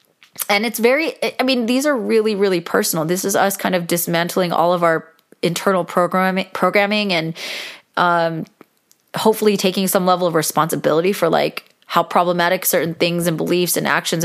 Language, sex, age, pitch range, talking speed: English, female, 20-39, 170-200 Hz, 170 wpm